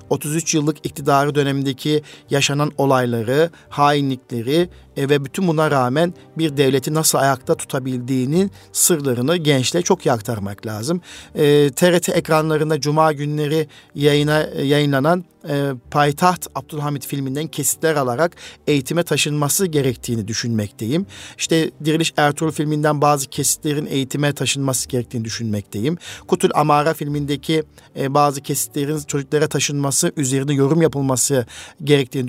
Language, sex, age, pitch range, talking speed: Turkish, male, 50-69, 135-155 Hz, 115 wpm